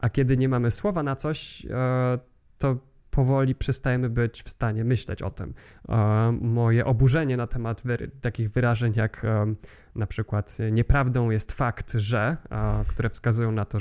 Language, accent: Polish, native